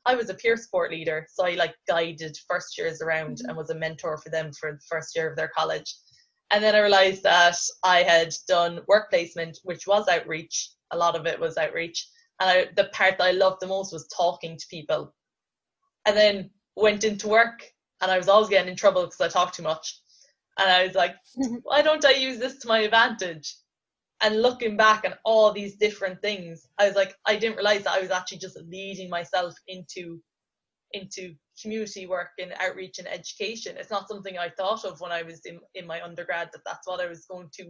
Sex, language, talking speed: female, English, 215 wpm